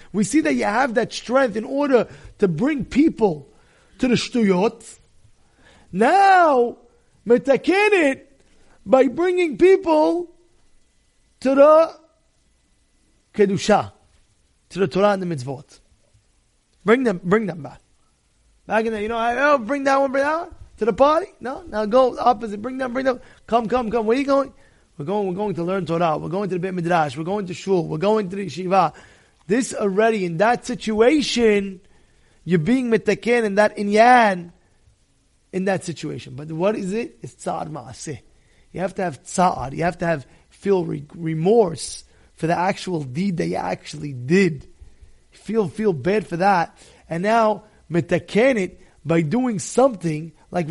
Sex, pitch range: male, 175-240 Hz